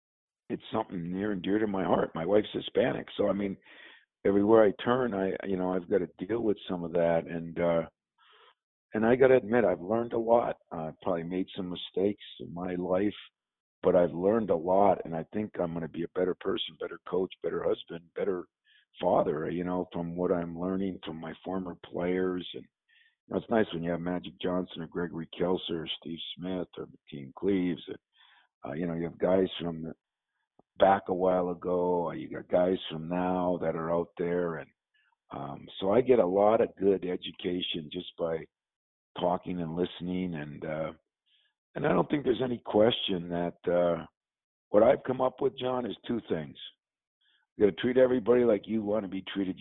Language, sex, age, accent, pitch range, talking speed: English, male, 50-69, American, 85-105 Hz, 195 wpm